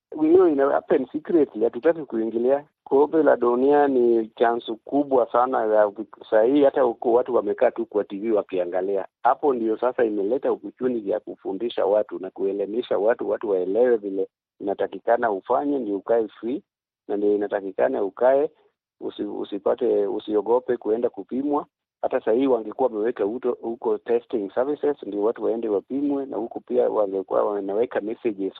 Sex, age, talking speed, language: male, 50-69, 140 wpm, Swahili